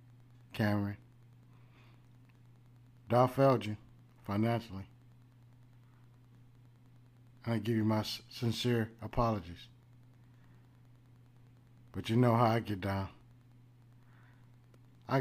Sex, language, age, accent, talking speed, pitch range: male, English, 50-69, American, 75 wpm, 120-125 Hz